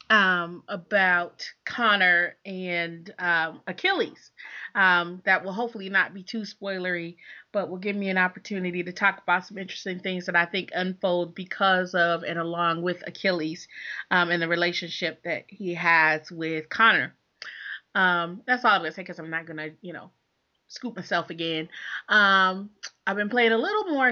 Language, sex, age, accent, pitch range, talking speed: English, female, 30-49, American, 175-215 Hz, 165 wpm